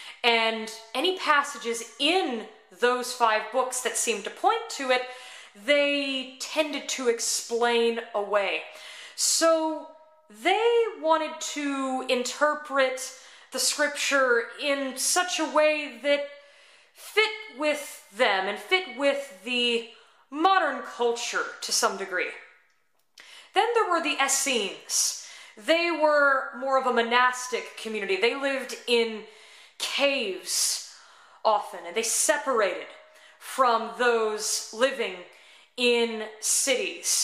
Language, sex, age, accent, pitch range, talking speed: English, female, 20-39, American, 230-295 Hz, 110 wpm